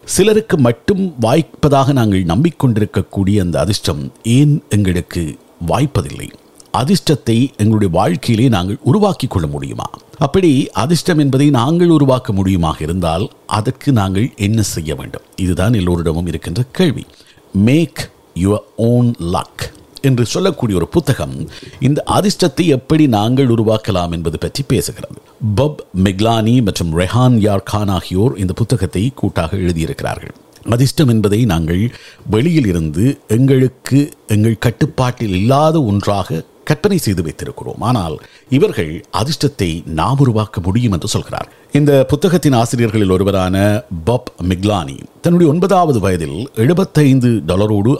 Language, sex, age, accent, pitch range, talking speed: Tamil, male, 50-69, native, 95-140 Hz, 100 wpm